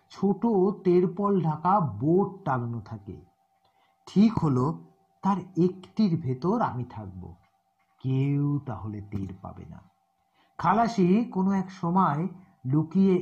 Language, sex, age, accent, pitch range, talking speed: Bengali, male, 50-69, native, 115-165 Hz, 110 wpm